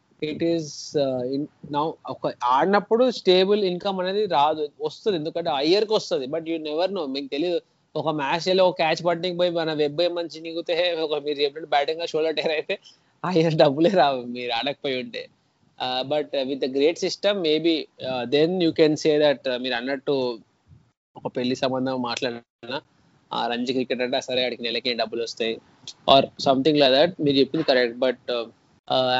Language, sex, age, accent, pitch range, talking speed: Telugu, male, 20-39, native, 140-175 Hz, 175 wpm